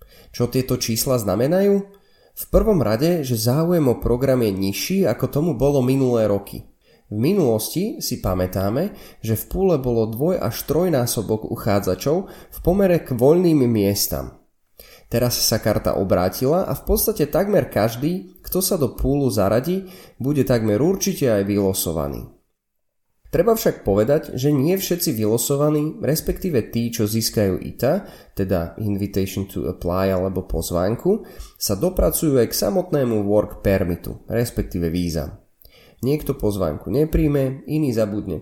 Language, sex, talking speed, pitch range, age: Slovak, male, 135 wpm, 100-165 Hz, 20-39